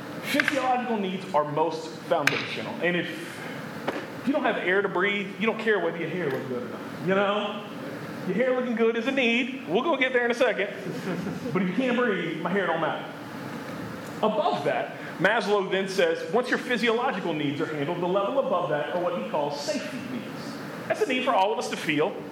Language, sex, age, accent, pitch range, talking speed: English, male, 30-49, American, 175-245 Hz, 210 wpm